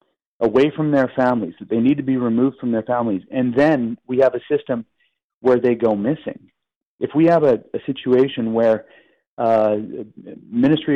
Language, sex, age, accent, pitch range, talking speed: English, male, 40-59, American, 110-130 Hz, 175 wpm